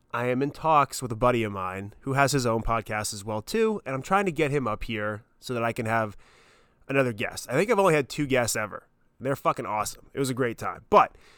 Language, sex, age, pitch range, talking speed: English, male, 20-39, 110-140 Hz, 260 wpm